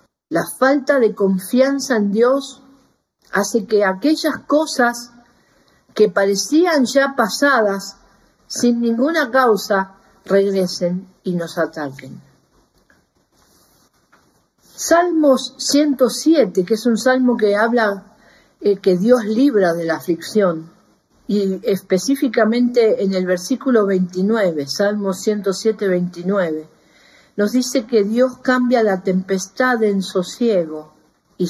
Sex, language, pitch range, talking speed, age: female, Spanish, 180-245 Hz, 105 wpm, 50-69